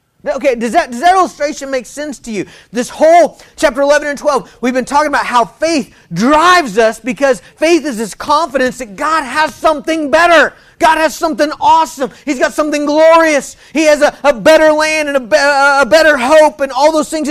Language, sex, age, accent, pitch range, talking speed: English, male, 40-59, American, 235-310 Hz, 200 wpm